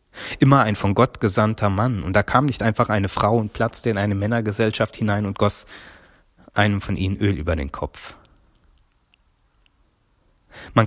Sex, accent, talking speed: male, German, 160 wpm